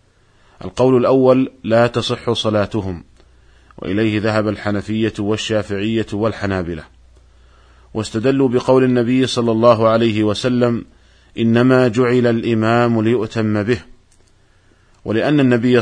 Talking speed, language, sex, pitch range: 90 wpm, Arabic, male, 100-120 Hz